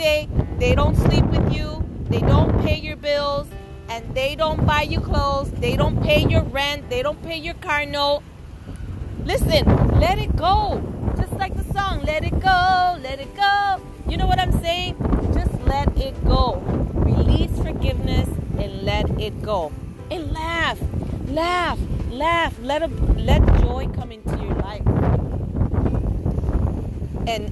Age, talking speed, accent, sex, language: 30-49, 150 wpm, American, female, English